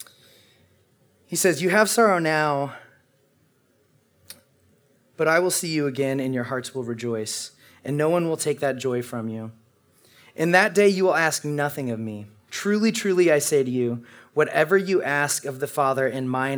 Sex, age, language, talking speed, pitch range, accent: male, 30-49, English, 175 wpm, 120-155 Hz, American